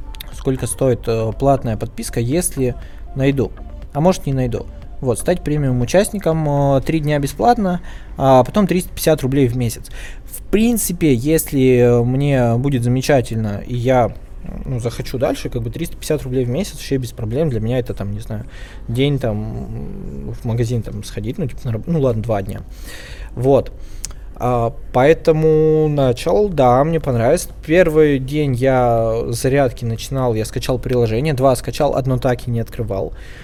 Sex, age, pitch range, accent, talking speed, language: male, 20-39, 120-145 Hz, native, 150 wpm, Russian